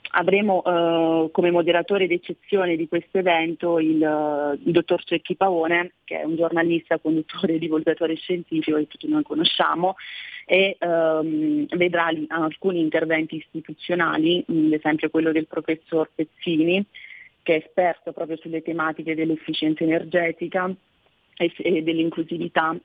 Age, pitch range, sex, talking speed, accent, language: 30-49, 155-175 Hz, female, 120 wpm, native, Italian